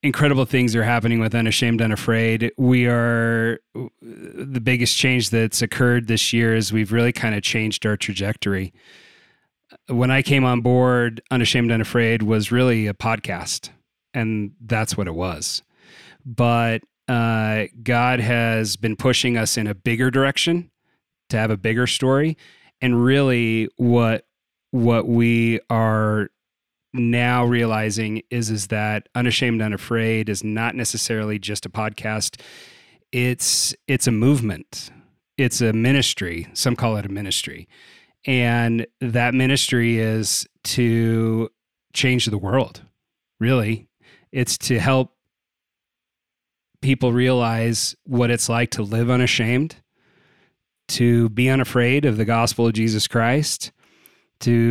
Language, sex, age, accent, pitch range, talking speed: English, male, 30-49, American, 110-125 Hz, 130 wpm